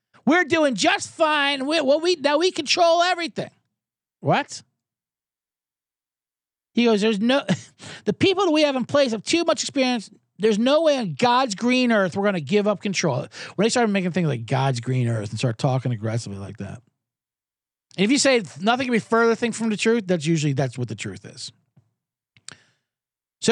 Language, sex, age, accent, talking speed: English, male, 50-69, American, 190 wpm